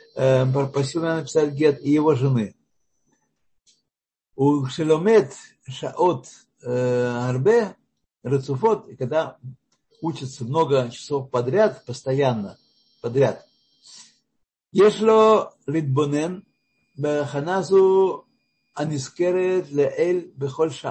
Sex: male